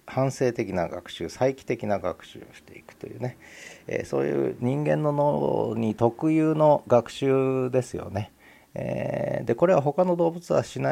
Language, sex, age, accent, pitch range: Japanese, male, 40-59, native, 95-130 Hz